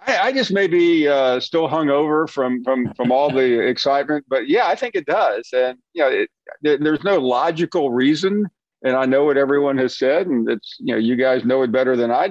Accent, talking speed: American, 235 wpm